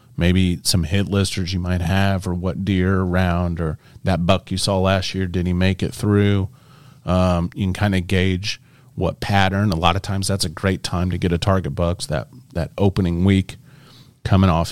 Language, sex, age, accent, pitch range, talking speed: English, male, 30-49, American, 90-115 Hz, 205 wpm